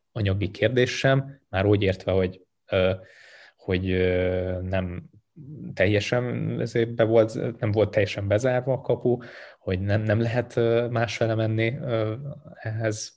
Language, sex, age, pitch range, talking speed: Hungarian, male, 20-39, 95-115 Hz, 115 wpm